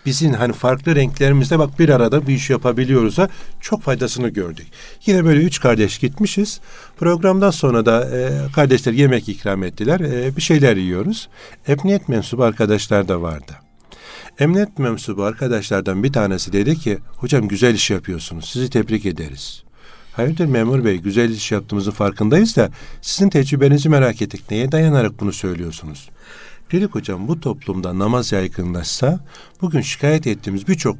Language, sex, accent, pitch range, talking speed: Turkish, male, native, 105-155 Hz, 145 wpm